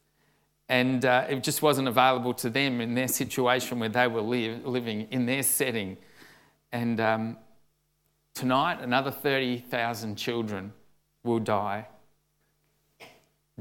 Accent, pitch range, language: Australian, 120-155 Hz, English